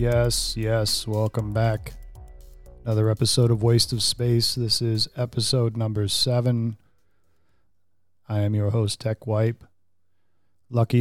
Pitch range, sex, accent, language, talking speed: 105-125 Hz, male, American, English, 120 wpm